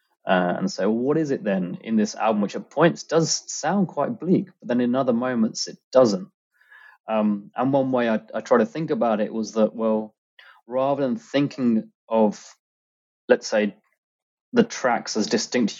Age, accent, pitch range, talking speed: 20-39, British, 105-130 Hz, 180 wpm